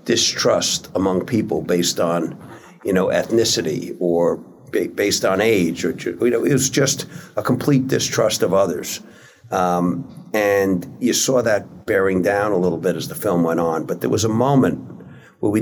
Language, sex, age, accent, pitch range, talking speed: English, male, 60-79, American, 90-125 Hz, 175 wpm